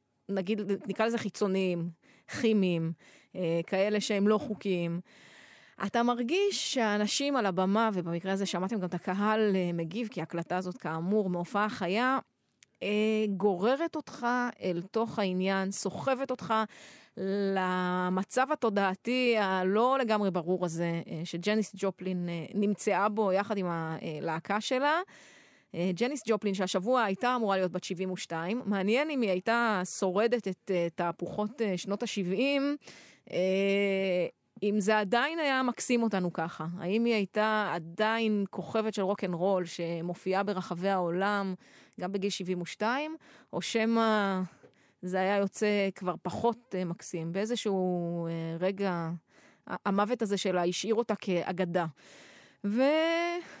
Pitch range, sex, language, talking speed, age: 180-220 Hz, female, Hebrew, 120 wpm, 30-49